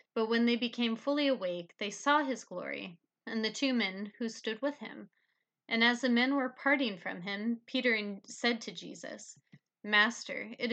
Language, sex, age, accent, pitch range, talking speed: English, female, 30-49, American, 205-255 Hz, 180 wpm